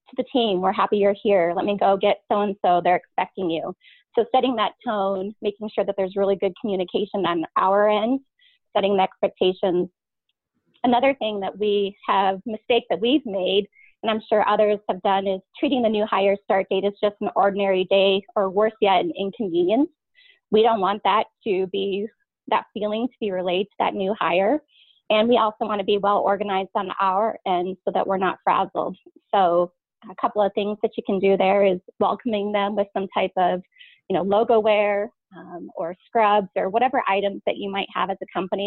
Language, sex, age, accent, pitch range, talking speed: English, female, 20-39, American, 195-225 Hz, 200 wpm